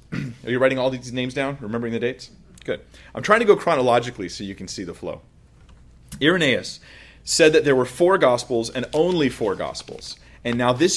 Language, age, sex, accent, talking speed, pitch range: English, 30-49, male, American, 195 wpm, 105-135 Hz